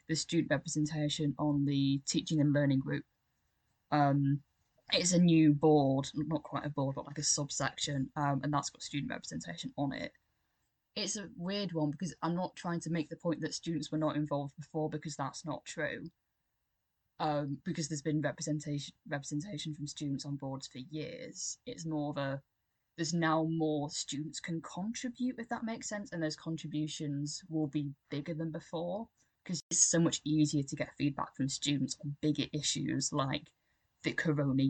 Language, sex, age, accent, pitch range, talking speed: English, female, 10-29, British, 145-160 Hz, 175 wpm